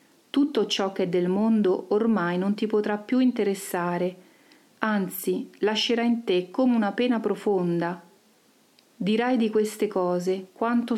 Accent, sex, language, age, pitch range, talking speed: native, female, Italian, 40-59, 185-215 Hz, 135 wpm